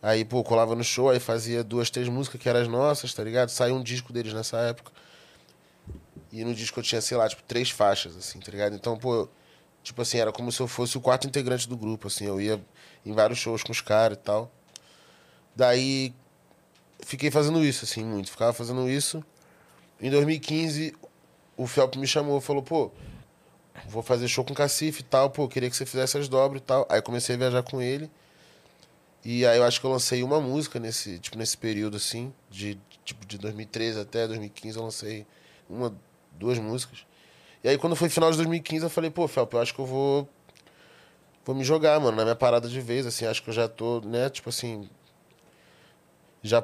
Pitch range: 115-135 Hz